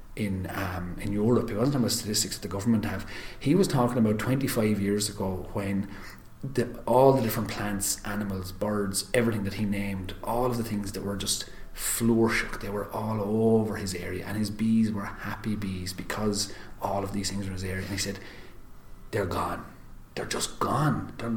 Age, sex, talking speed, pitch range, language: 30-49, male, 195 wpm, 95-110 Hz, English